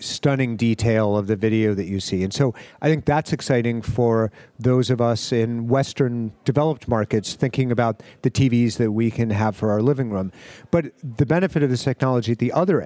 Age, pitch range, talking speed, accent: 40-59, 115-140 Hz, 200 wpm, American